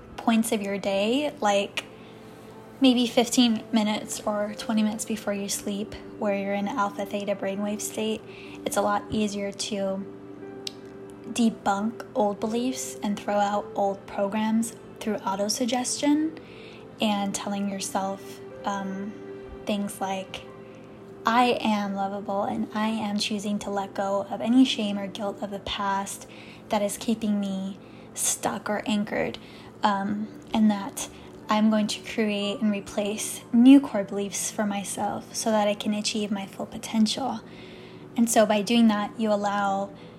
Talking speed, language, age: 140 wpm, English, 10-29